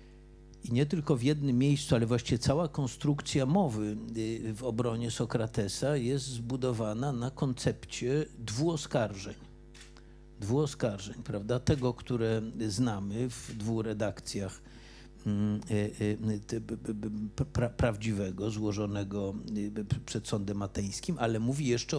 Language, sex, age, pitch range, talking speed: Polish, male, 50-69, 110-130 Hz, 110 wpm